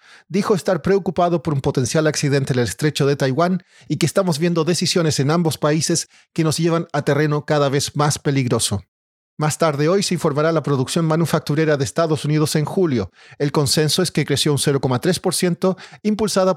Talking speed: 180 wpm